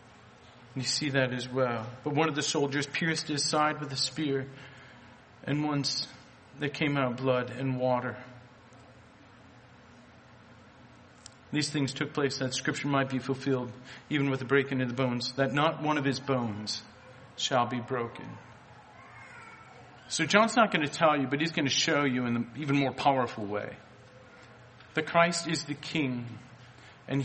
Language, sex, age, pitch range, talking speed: English, male, 40-59, 125-155 Hz, 165 wpm